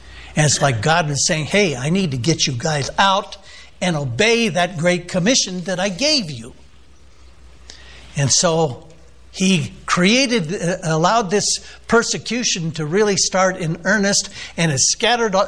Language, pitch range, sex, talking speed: English, 145-200 Hz, male, 145 wpm